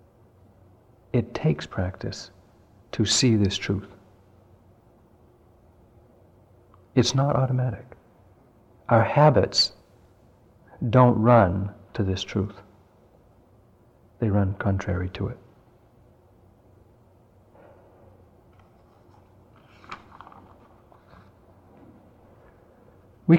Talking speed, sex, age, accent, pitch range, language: 60 wpm, male, 60-79, American, 95-115 Hz, English